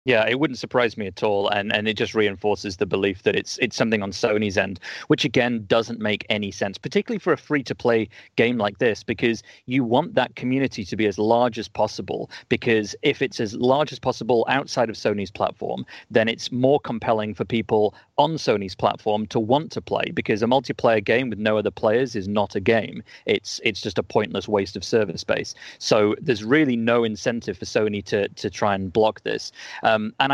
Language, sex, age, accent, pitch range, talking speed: English, male, 30-49, British, 105-120 Hz, 210 wpm